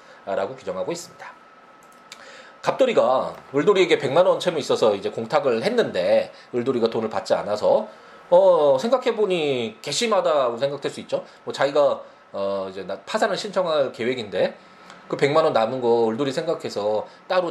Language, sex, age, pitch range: Korean, male, 20-39, 140-235 Hz